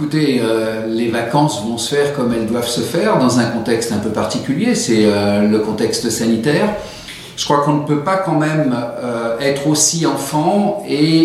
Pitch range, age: 120-155 Hz, 50-69